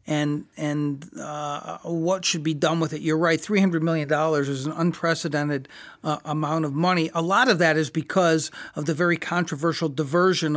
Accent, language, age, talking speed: American, English, 40-59, 175 wpm